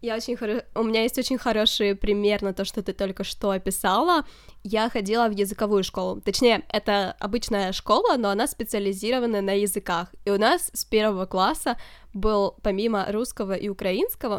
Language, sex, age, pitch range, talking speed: Ukrainian, female, 10-29, 200-235 Hz, 160 wpm